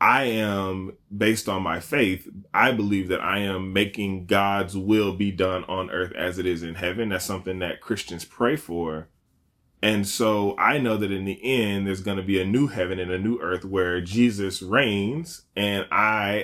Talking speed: 195 wpm